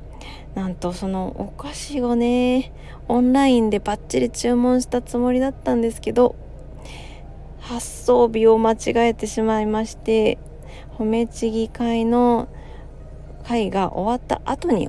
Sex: female